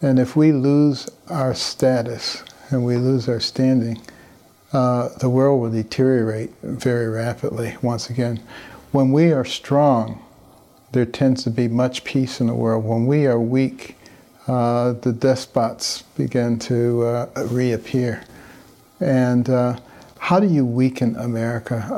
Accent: American